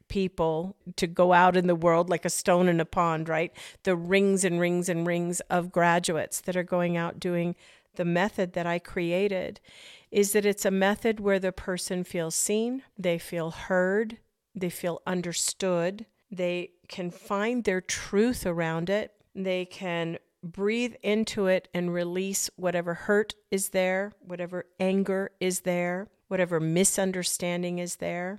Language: English